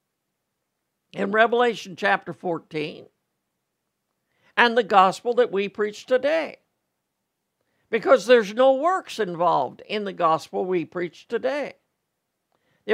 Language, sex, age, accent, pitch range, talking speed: English, male, 60-79, American, 190-255 Hz, 105 wpm